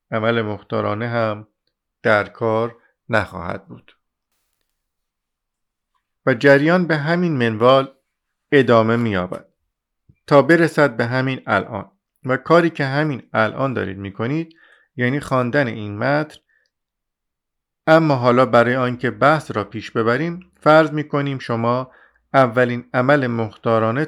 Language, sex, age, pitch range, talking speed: Persian, male, 50-69, 110-140 Hz, 110 wpm